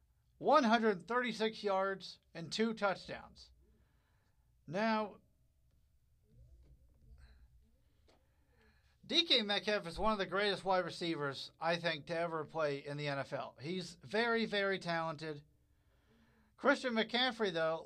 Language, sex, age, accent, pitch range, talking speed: English, male, 50-69, American, 155-225 Hz, 100 wpm